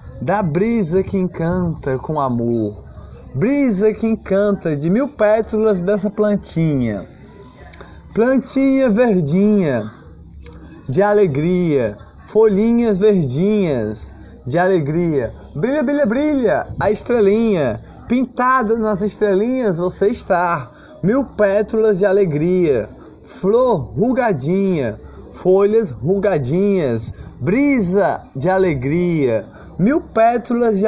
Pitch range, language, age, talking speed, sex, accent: 145-220 Hz, Portuguese, 20-39, 90 wpm, male, Brazilian